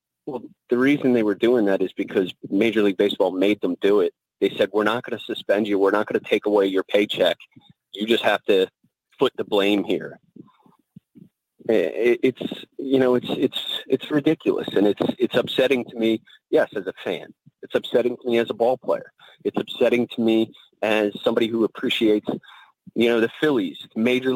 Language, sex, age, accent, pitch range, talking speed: English, male, 30-49, American, 105-130 Hz, 190 wpm